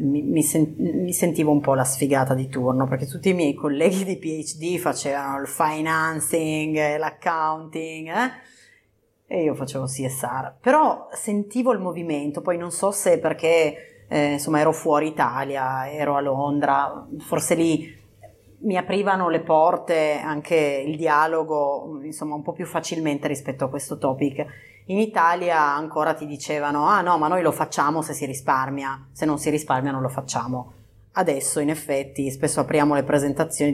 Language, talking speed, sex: Italian, 155 wpm, female